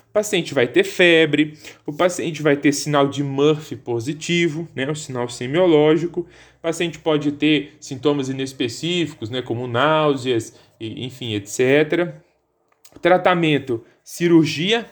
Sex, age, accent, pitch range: male, 20-39, Brazilian, 135-175 Hz